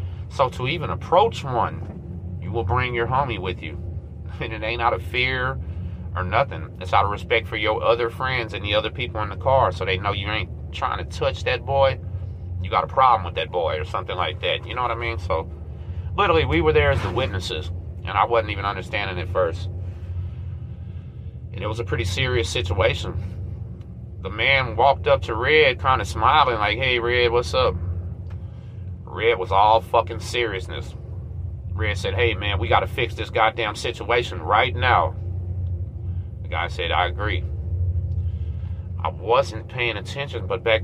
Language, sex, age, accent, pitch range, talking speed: English, male, 30-49, American, 90-110 Hz, 185 wpm